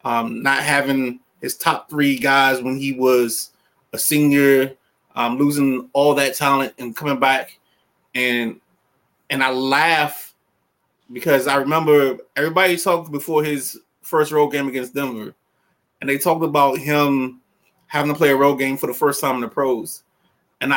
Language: English